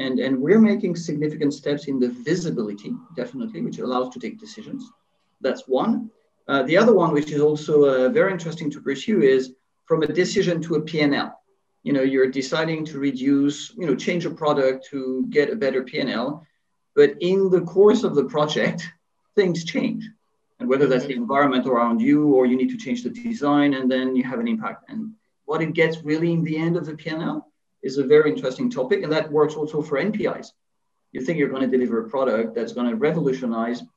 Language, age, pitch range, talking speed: English, 40-59, 135-185 Hz, 200 wpm